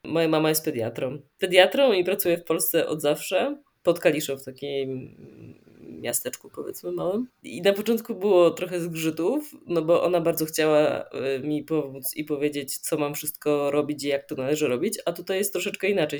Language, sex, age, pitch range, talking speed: Polish, female, 20-39, 140-170 Hz, 175 wpm